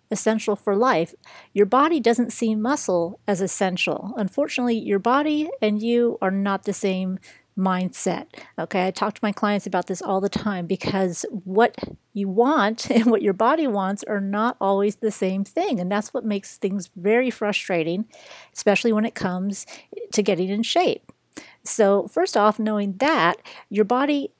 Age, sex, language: 40-59, female, English